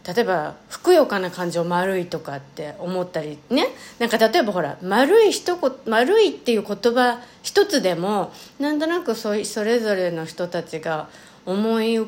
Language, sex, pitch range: Japanese, female, 180-255 Hz